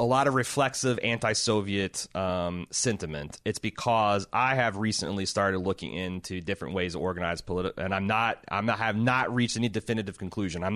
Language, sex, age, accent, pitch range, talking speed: English, male, 30-49, American, 100-125 Hz, 180 wpm